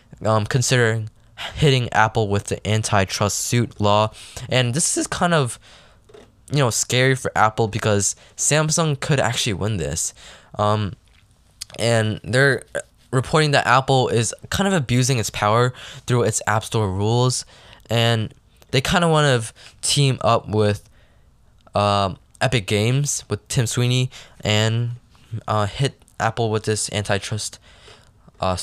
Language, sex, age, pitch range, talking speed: English, male, 10-29, 105-125 Hz, 135 wpm